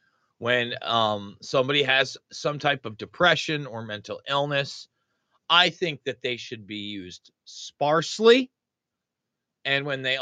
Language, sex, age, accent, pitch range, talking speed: English, male, 30-49, American, 125-175 Hz, 130 wpm